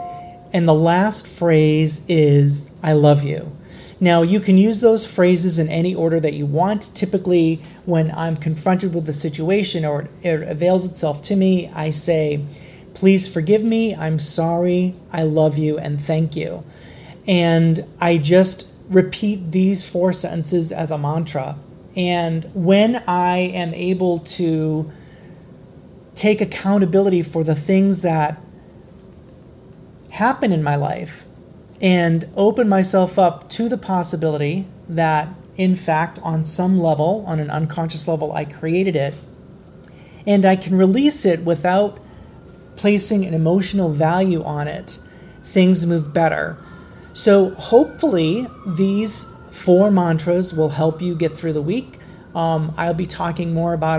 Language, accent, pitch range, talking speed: English, American, 160-185 Hz, 140 wpm